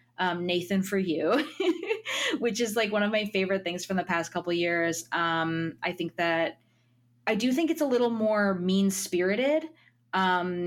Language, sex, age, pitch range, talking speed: English, female, 20-39, 165-205 Hz, 175 wpm